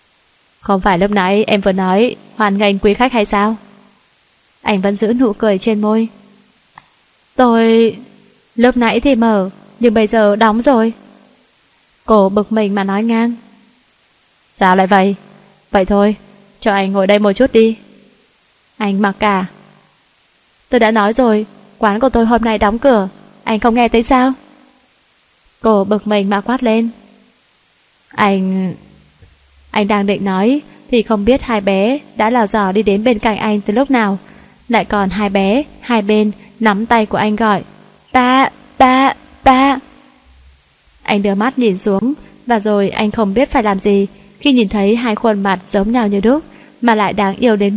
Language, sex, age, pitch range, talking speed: Vietnamese, female, 20-39, 200-240 Hz, 170 wpm